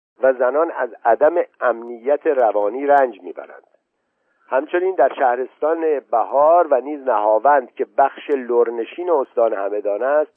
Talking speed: 120 wpm